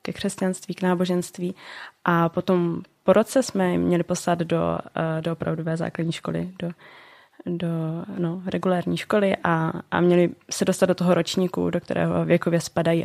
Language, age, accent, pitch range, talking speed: Czech, 20-39, native, 165-190 Hz, 150 wpm